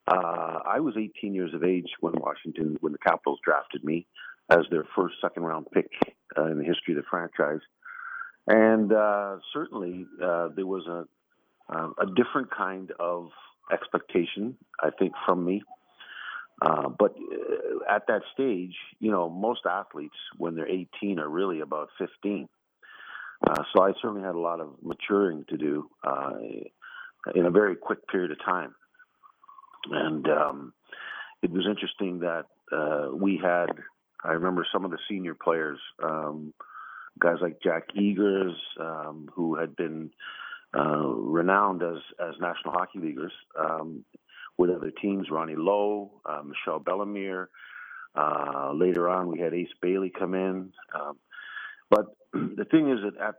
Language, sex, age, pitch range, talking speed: English, male, 50-69, 85-105 Hz, 155 wpm